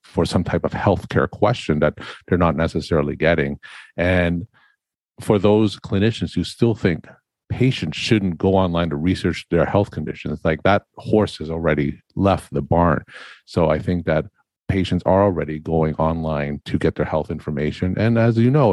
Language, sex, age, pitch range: English, male, 50-69, 85-105 Hz